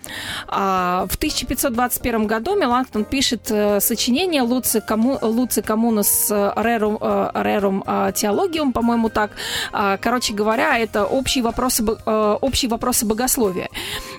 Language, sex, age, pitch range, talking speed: Russian, female, 30-49, 215-265 Hz, 85 wpm